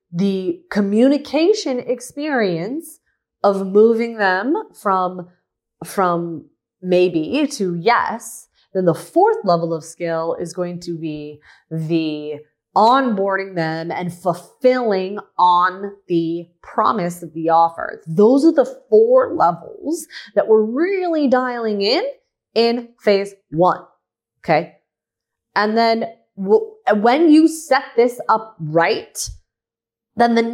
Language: English